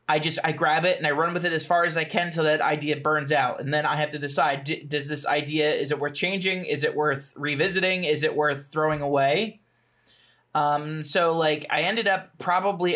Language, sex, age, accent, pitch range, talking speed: English, male, 30-49, American, 145-180 Hz, 225 wpm